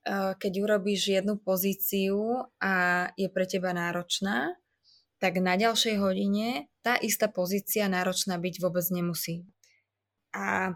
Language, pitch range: Slovak, 180-205 Hz